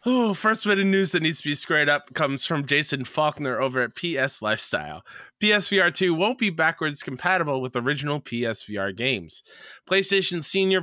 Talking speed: 170 wpm